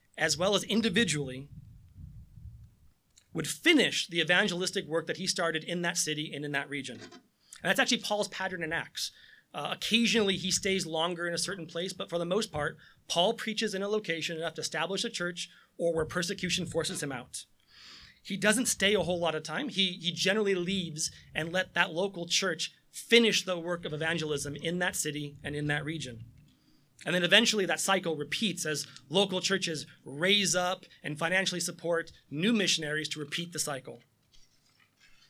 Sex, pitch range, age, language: male, 155-195 Hz, 30-49, English